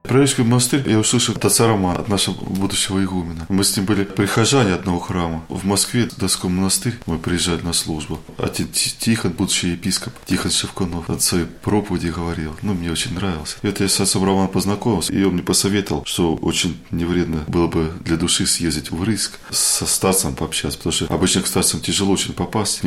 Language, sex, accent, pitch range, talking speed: Russian, male, native, 80-100 Hz, 195 wpm